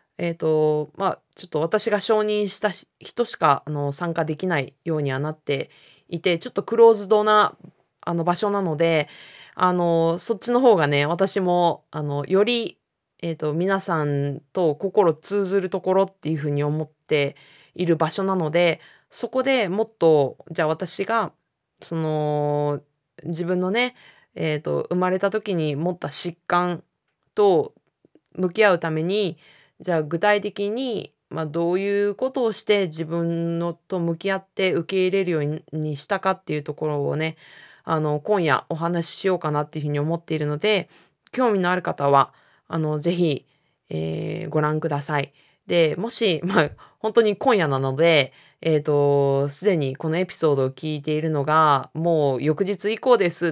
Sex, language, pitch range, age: female, Japanese, 150-195 Hz, 20-39